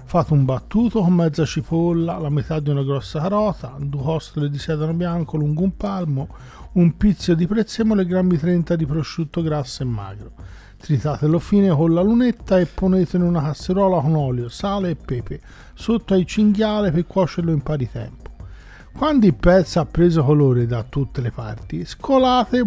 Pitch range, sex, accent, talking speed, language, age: 140-195 Hz, male, native, 175 wpm, Italian, 40-59